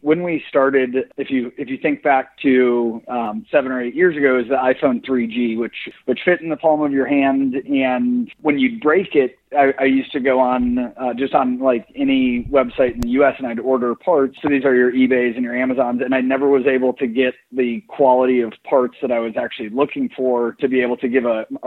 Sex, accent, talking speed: male, American, 235 wpm